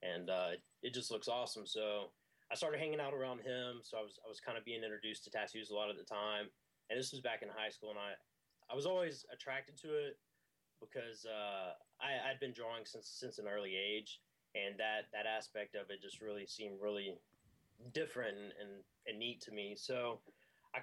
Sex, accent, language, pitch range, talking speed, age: male, American, English, 105-130 Hz, 210 wpm, 20-39